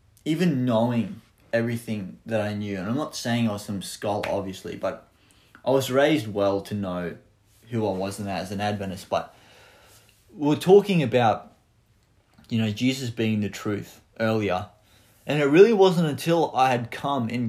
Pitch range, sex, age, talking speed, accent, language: 105-125 Hz, male, 20-39, 170 wpm, Australian, English